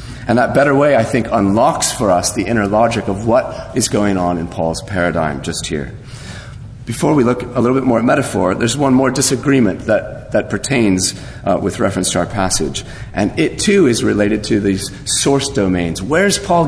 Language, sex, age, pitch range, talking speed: English, male, 40-59, 105-135 Hz, 200 wpm